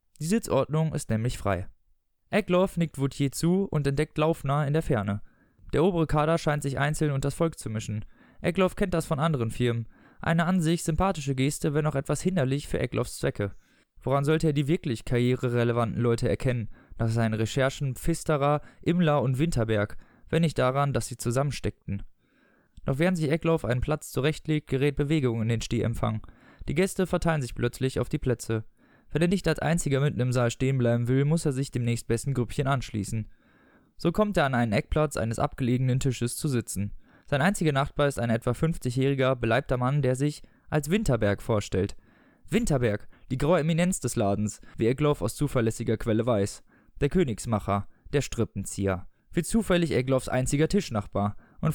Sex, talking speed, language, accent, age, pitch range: male, 175 wpm, German, German, 20-39, 115-155 Hz